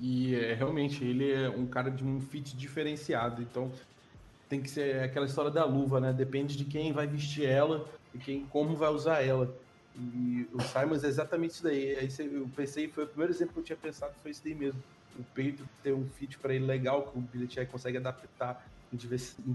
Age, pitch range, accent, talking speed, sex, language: 20-39, 120-140 Hz, Brazilian, 210 wpm, male, Portuguese